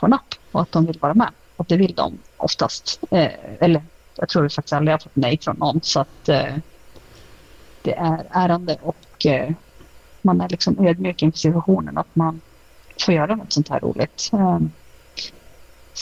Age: 30-49